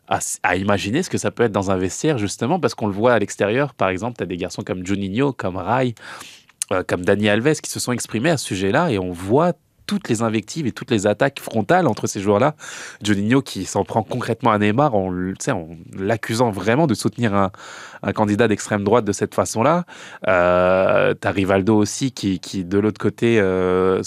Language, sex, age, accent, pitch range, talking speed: French, male, 20-39, French, 100-120 Hz, 210 wpm